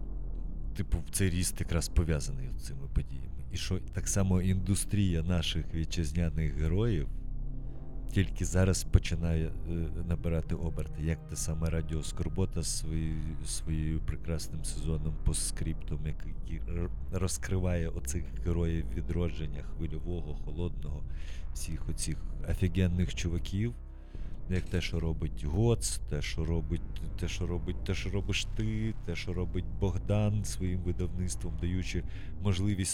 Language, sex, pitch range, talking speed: Ukrainian, male, 80-95 Hz, 120 wpm